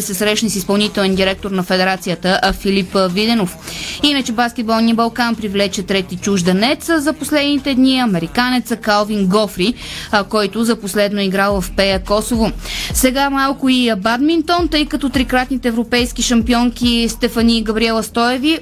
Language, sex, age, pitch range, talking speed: Bulgarian, female, 20-39, 210-250 Hz, 130 wpm